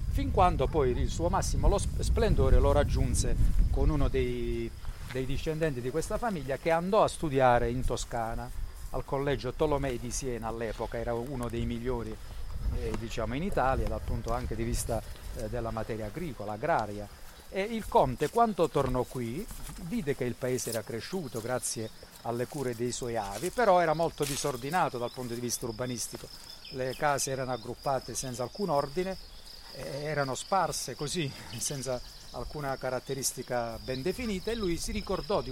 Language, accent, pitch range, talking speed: Italian, native, 115-150 Hz, 160 wpm